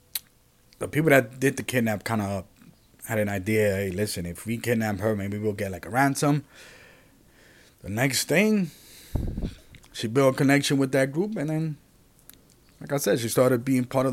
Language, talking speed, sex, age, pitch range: English, 185 wpm, male, 30-49, 105-140 Hz